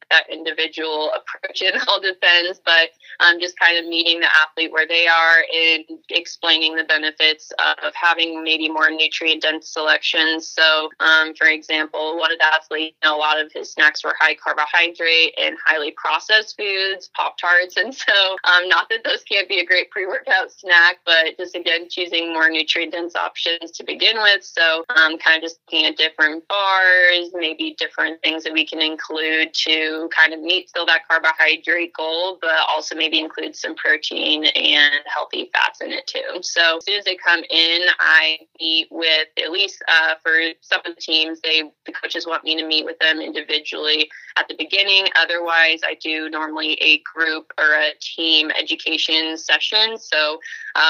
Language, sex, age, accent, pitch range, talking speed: English, female, 20-39, American, 160-170 Hz, 185 wpm